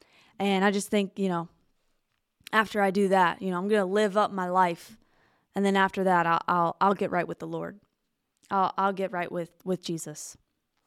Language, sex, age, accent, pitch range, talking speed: English, female, 20-39, American, 185-220 Hz, 210 wpm